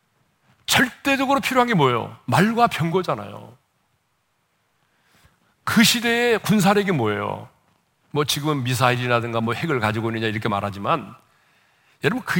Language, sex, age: Korean, male, 40-59